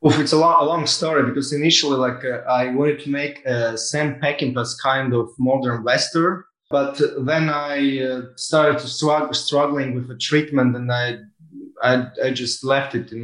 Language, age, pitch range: English, 20-39, 125-145 Hz